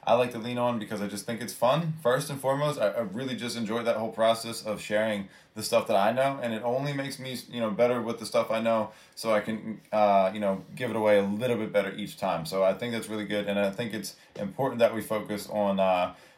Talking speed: 270 wpm